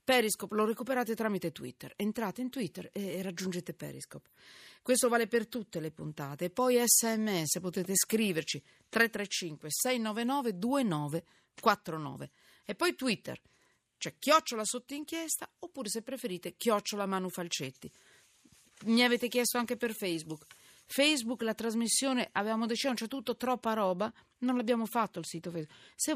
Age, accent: 40-59, native